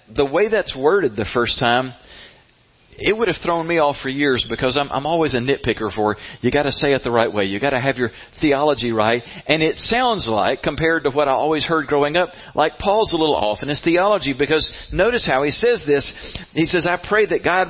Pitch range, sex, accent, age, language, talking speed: 135-190 Hz, male, American, 40-59, English, 235 wpm